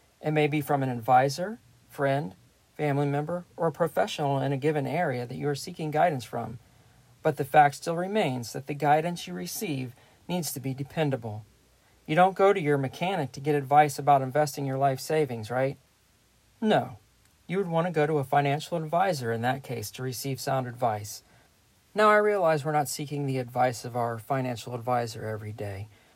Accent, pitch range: American, 120-155 Hz